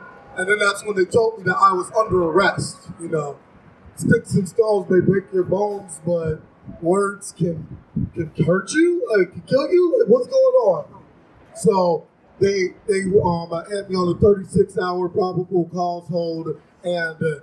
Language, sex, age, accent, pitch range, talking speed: English, male, 30-49, American, 170-210 Hz, 160 wpm